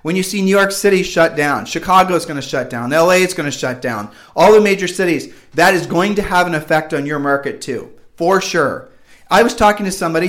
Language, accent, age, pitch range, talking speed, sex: English, American, 40-59, 150-185 Hz, 245 wpm, male